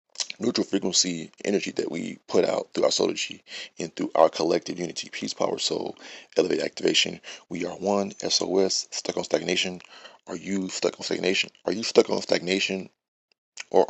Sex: male